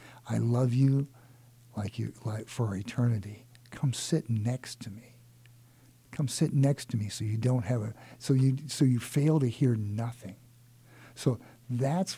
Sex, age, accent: male, 60-79, American